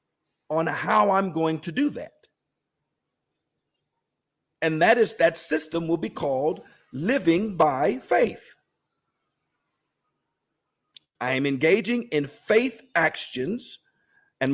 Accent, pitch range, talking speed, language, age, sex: American, 155-220 Hz, 105 wpm, English, 50-69, male